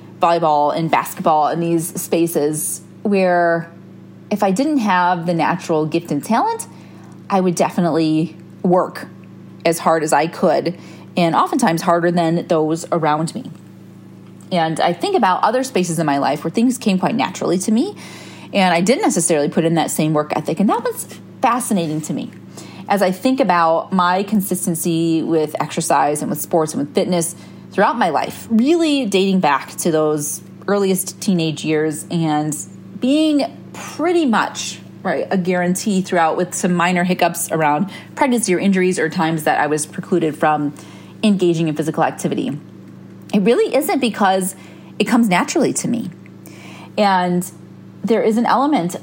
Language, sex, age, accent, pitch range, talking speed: English, female, 30-49, American, 160-200 Hz, 160 wpm